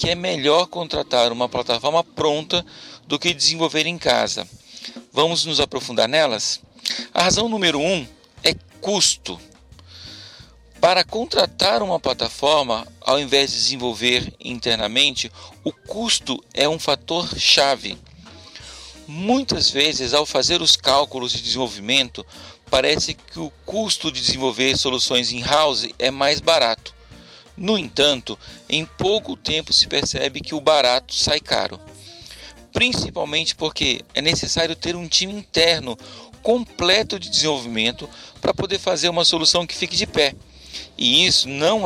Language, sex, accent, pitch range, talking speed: Portuguese, male, Brazilian, 120-170 Hz, 130 wpm